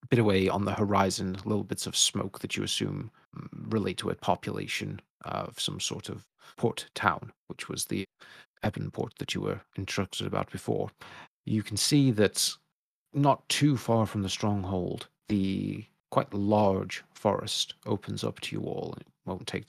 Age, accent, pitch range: 30-49, British, 95-110 Hz